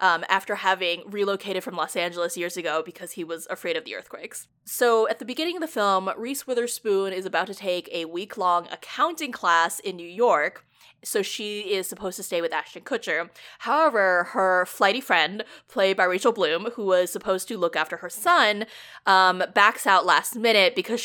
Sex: female